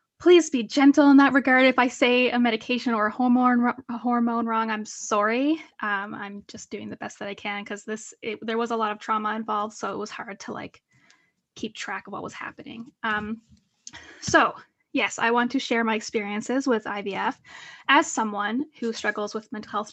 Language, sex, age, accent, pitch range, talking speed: English, female, 10-29, American, 215-255 Hz, 210 wpm